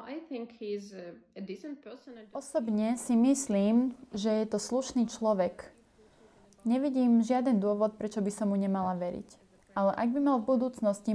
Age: 20-39